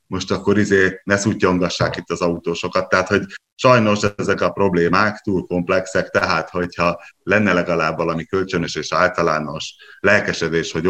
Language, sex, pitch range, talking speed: Hungarian, male, 85-110 Hz, 145 wpm